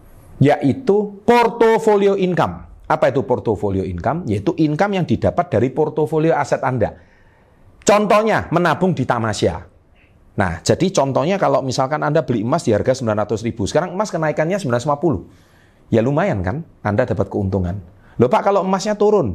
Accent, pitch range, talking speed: native, 95-160 Hz, 140 wpm